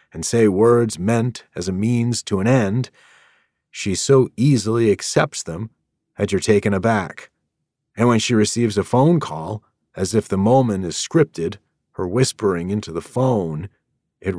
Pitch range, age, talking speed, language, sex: 85-110 Hz, 40-59, 160 wpm, English, male